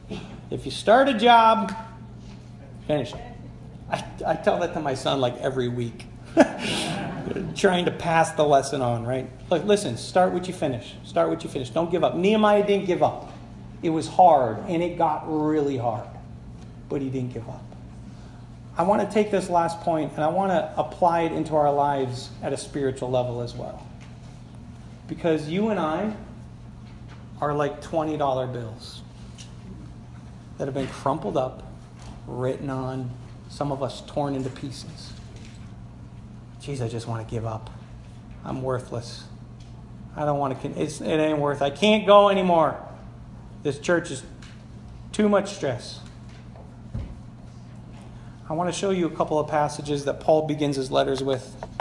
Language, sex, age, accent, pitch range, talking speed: English, male, 40-59, American, 120-165 Hz, 160 wpm